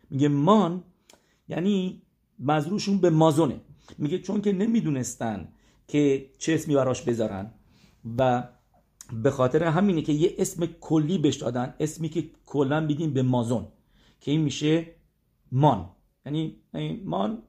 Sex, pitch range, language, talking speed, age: male, 115-150 Hz, English, 125 wpm, 50-69